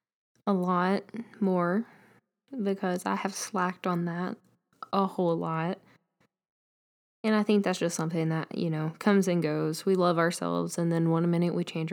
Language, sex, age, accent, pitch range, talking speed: English, female, 10-29, American, 170-205 Hz, 165 wpm